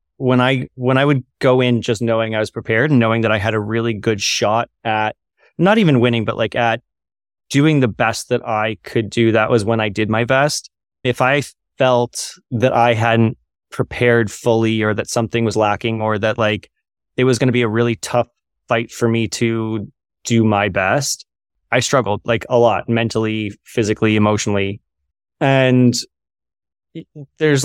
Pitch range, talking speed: 110-125 Hz, 180 wpm